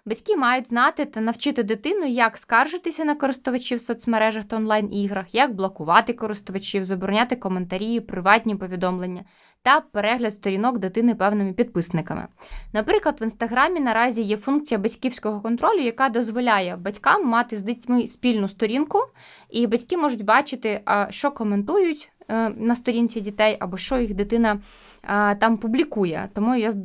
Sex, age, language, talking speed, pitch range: female, 20-39, Ukrainian, 135 wpm, 205-250 Hz